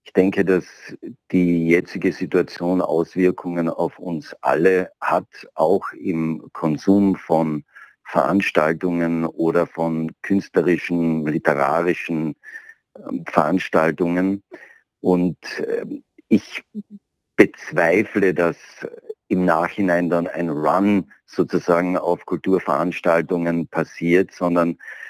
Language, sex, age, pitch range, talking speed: German, male, 50-69, 85-95 Hz, 85 wpm